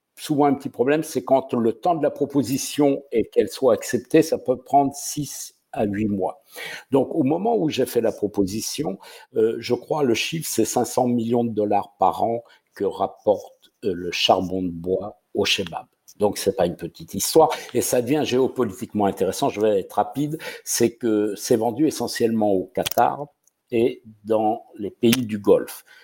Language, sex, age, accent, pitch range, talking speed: French, male, 60-79, French, 100-140 Hz, 185 wpm